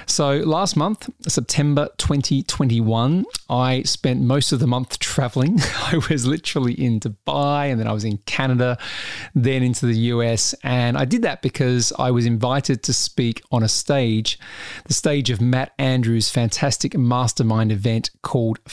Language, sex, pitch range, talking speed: English, male, 115-135 Hz, 155 wpm